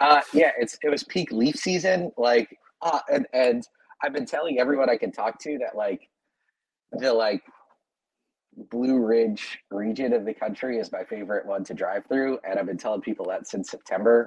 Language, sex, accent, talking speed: English, male, American, 190 wpm